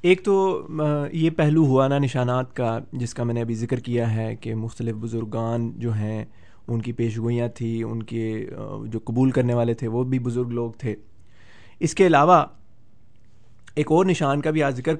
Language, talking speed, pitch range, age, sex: Urdu, 190 wpm, 120-145 Hz, 30-49, male